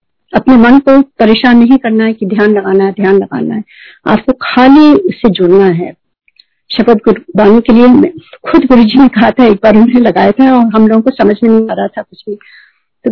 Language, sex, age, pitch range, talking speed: Hindi, female, 50-69, 215-270 Hz, 205 wpm